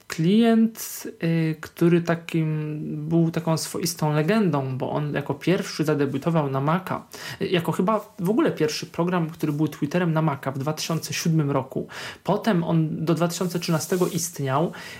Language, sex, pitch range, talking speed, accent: Polish, male, 150-185 Hz, 130 wpm, native